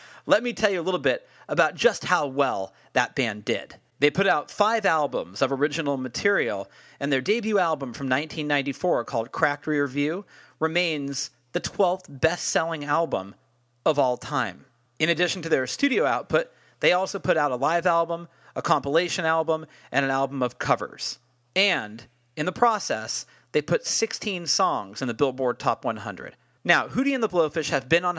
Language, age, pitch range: English, 40-59, 130-180 Hz